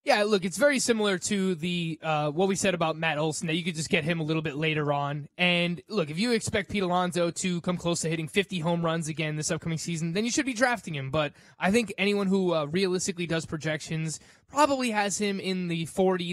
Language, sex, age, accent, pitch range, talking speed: English, male, 20-39, American, 155-195 Hz, 235 wpm